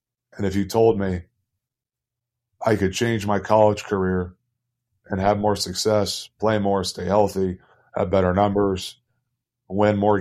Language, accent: English, American